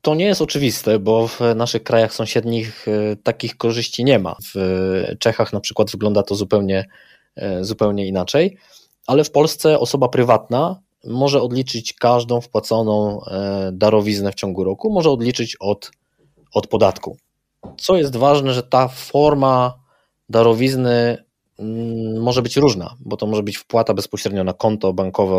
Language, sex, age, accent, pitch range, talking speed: Polish, male, 20-39, native, 100-125 Hz, 140 wpm